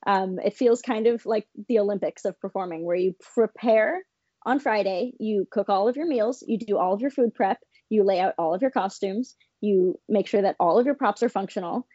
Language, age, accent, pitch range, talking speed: English, 20-39, American, 205-255 Hz, 225 wpm